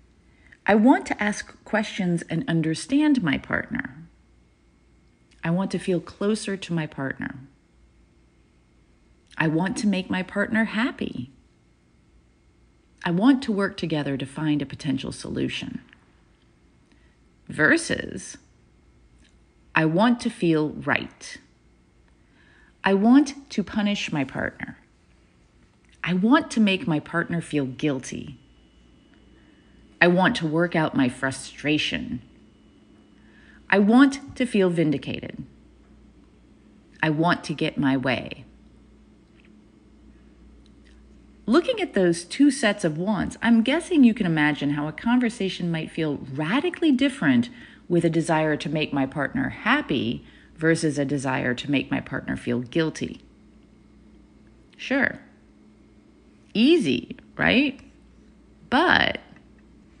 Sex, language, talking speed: female, English, 110 wpm